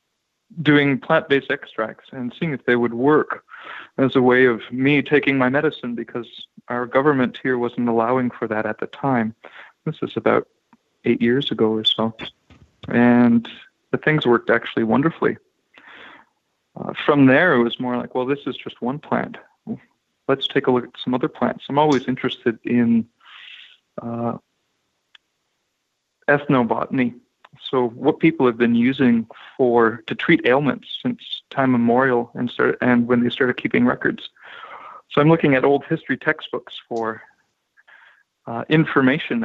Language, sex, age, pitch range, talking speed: English, male, 40-59, 120-135 Hz, 150 wpm